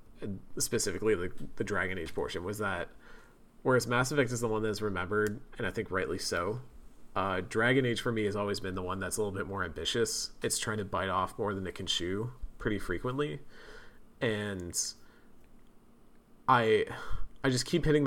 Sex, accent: male, American